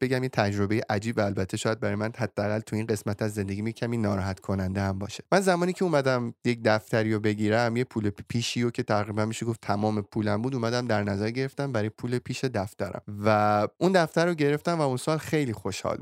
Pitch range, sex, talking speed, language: 105-140 Hz, male, 215 wpm, Persian